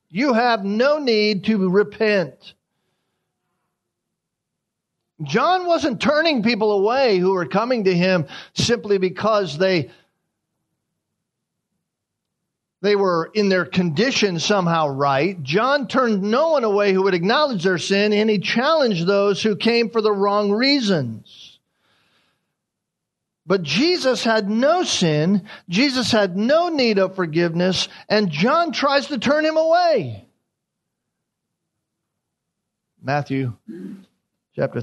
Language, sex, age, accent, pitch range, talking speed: English, male, 50-69, American, 140-225 Hz, 115 wpm